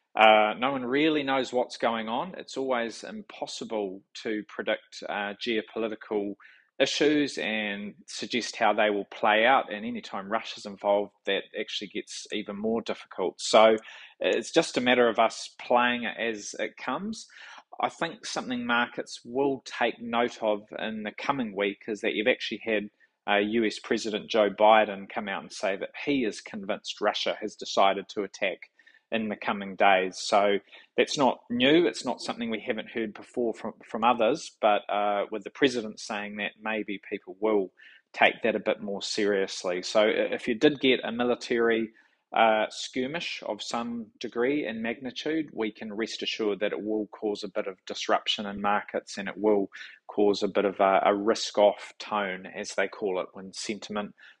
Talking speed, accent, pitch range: 175 wpm, Australian, 105-120 Hz